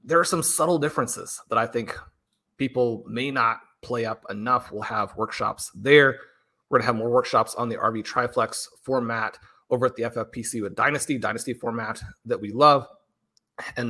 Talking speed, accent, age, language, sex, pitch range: 175 wpm, American, 30-49, English, male, 115-135 Hz